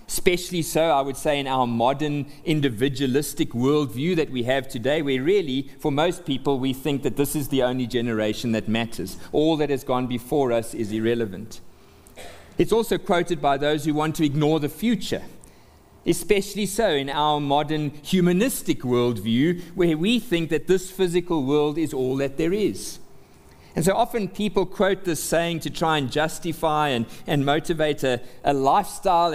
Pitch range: 135-180 Hz